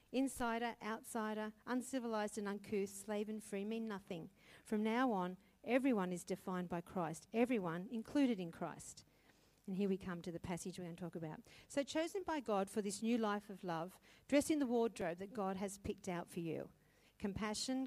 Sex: female